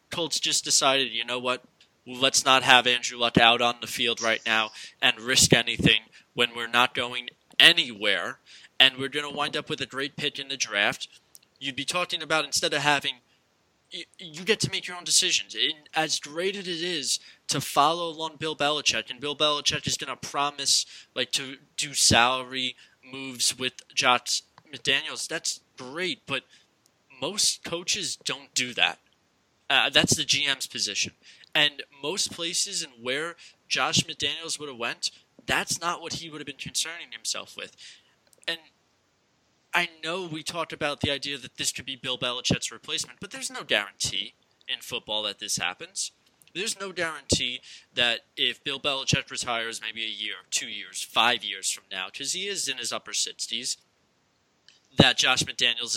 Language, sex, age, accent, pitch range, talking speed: English, male, 20-39, American, 120-155 Hz, 175 wpm